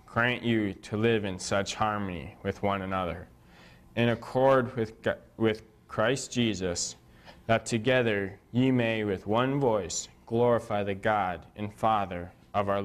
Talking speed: 140 wpm